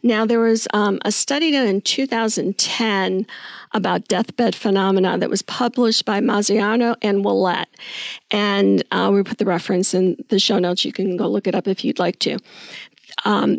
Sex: female